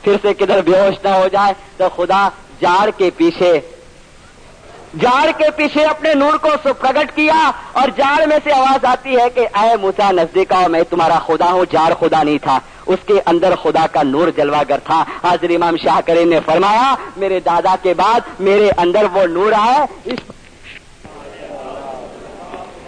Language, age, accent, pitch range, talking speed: English, 50-69, Indian, 180-255 Hz, 165 wpm